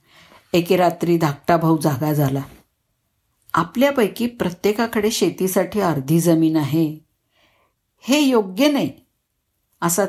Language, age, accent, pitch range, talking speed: Marathi, 50-69, native, 165-220 Hz, 95 wpm